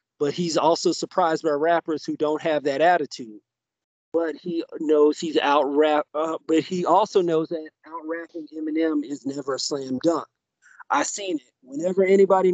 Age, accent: 40-59, American